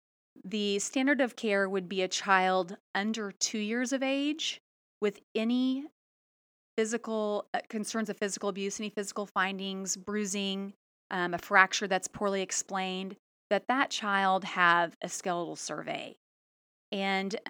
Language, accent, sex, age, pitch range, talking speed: English, American, female, 30-49, 185-220 Hz, 135 wpm